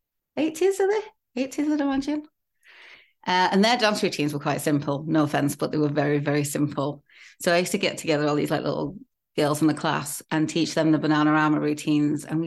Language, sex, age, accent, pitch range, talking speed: English, female, 30-49, British, 150-190 Hz, 210 wpm